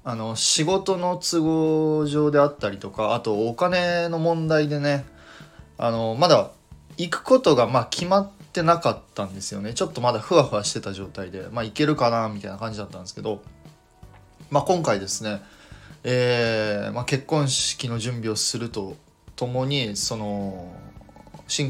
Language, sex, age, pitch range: Japanese, male, 20-39, 105-145 Hz